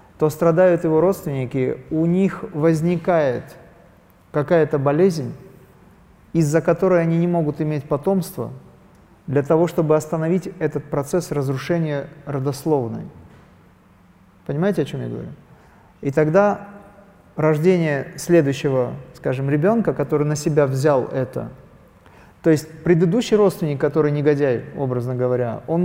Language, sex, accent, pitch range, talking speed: Russian, male, native, 140-175 Hz, 115 wpm